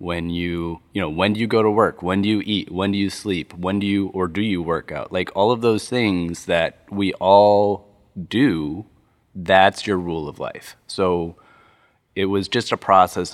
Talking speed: 205 wpm